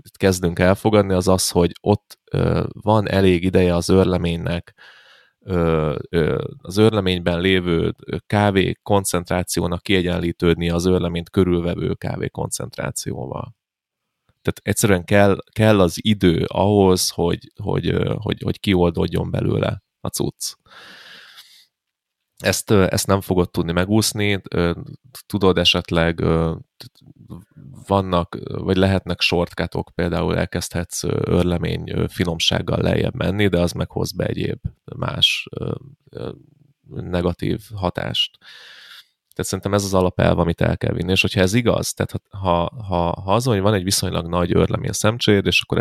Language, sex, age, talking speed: Hungarian, male, 30-49, 115 wpm